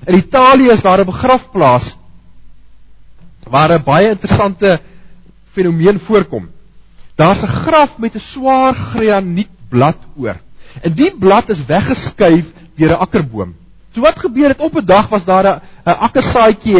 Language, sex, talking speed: English, male, 145 wpm